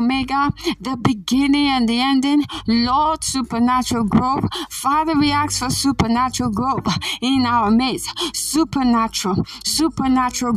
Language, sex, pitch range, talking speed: English, female, 245-275 Hz, 115 wpm